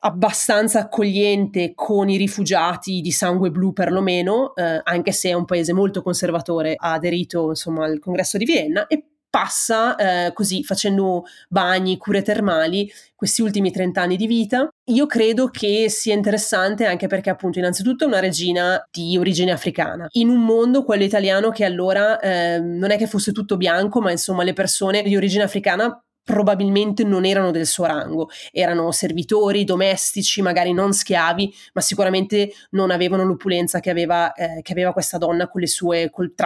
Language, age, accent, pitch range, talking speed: Italian, 30-49, native, 175-210 Hz, 165 wpm